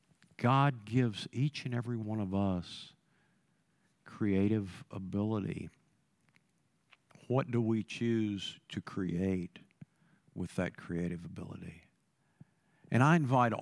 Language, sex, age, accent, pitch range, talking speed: English, male, 50-69, American, 100-135 Hz, 100 wpm